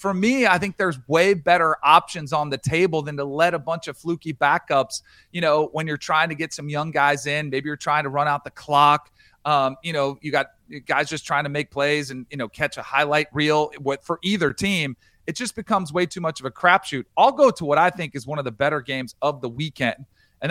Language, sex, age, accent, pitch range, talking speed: English, male, 40-59, American, 140-175 Hz, 250 wpm